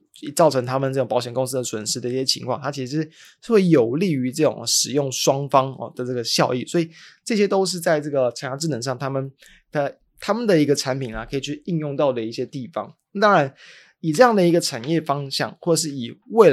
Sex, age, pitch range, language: male, 20-39, 125-160 Hz, Chinese